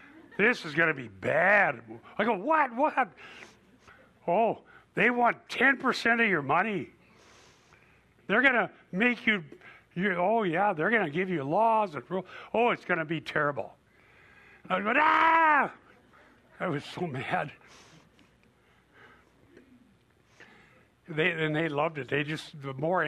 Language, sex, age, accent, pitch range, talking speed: English, male, 60-79, American, 135-215 Hz, 135 wpm